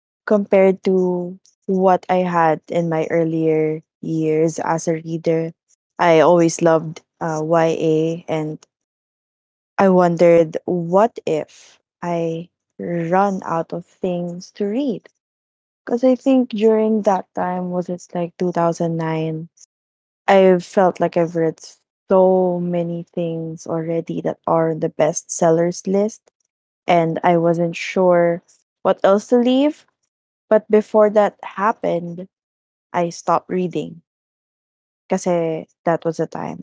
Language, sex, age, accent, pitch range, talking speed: English, female, 20-39, Filipino, 165-190 Hz, 120 wpm